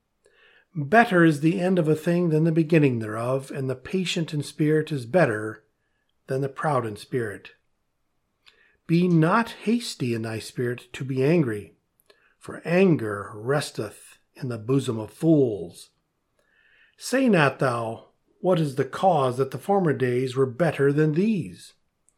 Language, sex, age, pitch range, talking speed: English, male, 50-69, 125-175 Hz, 150 wpm